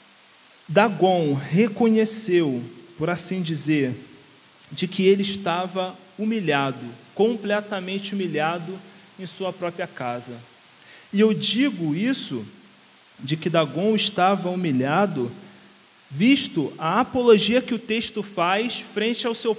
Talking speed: 105 wpm